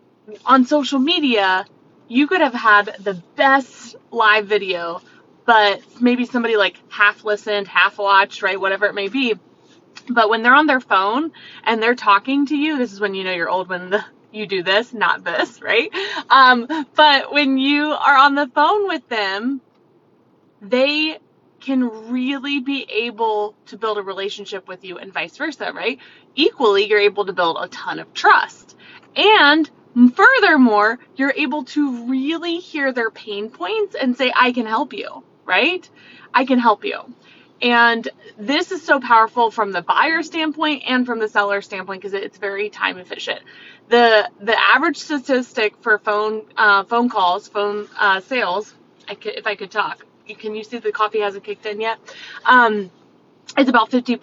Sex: female